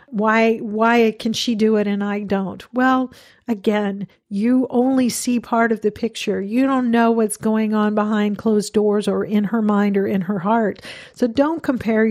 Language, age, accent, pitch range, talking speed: English, 50-69, American, 210-240 Hz, 190 wpm